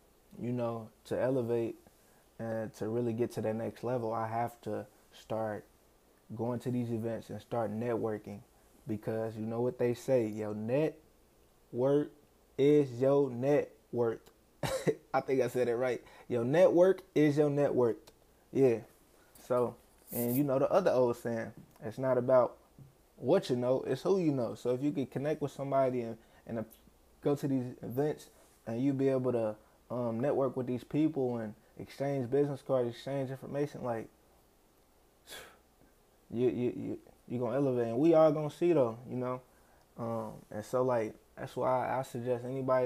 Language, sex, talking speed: English, male, 170 wpm